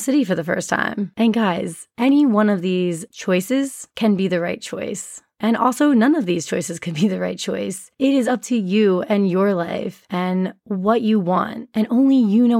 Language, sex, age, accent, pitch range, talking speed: English, female, 20-39, American, 185-235 Hz, 210 wpm